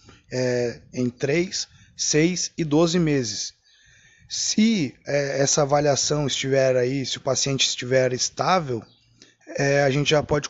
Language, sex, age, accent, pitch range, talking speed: Portuguese, male, 20-39, Brazilian, 130-150 Hz, 115 wpm